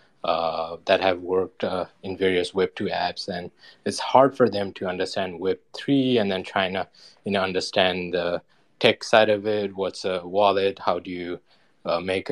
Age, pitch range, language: 20-39, 90-110 Hz, English